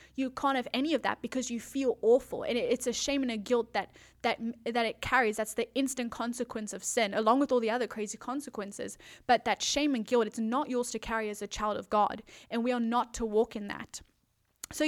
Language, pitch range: English, 225-260 Hz